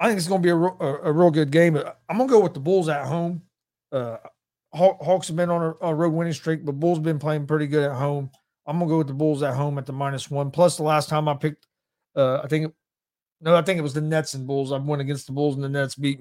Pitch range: 140-165 Hz